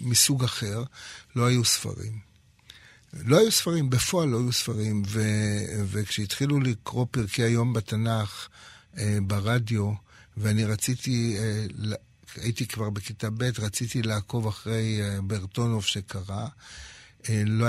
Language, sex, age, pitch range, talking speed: Hebrew, male, 60-79, 105-120 Hz, 120 wpm